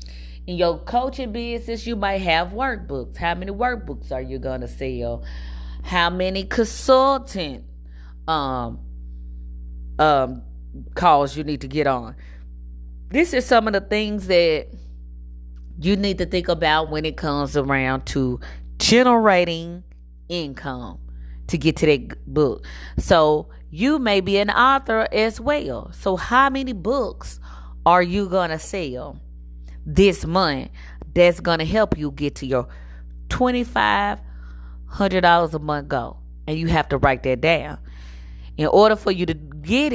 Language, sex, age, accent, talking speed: English, female, 30-49, American, 140 wpm